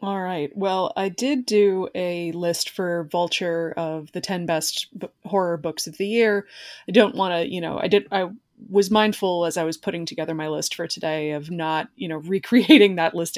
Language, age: English, 20-39